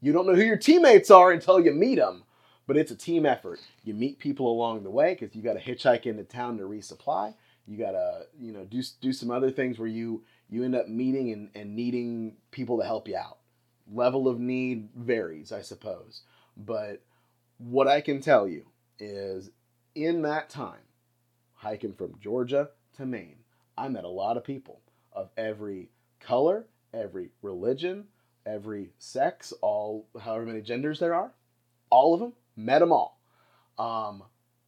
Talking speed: 175 wpm